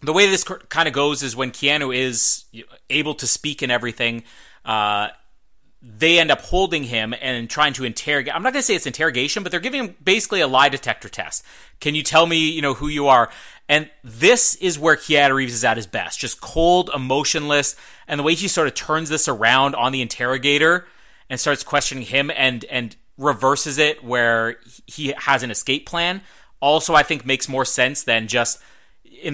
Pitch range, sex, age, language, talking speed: 130-165 Hz, male, 30-49, English, 200 wpm